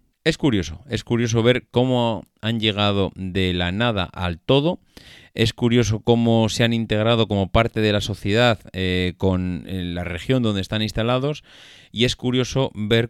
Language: Spanish